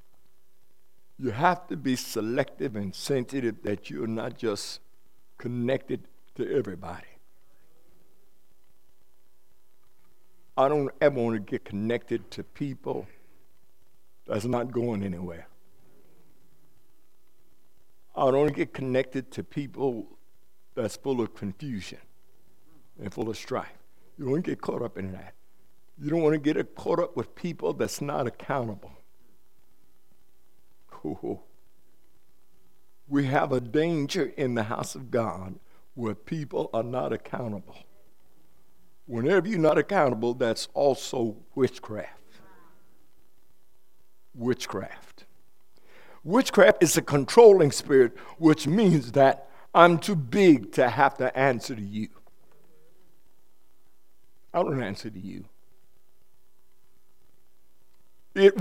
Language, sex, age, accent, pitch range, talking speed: English, male, 60-79, American, 100-150 Hz, 110 wpm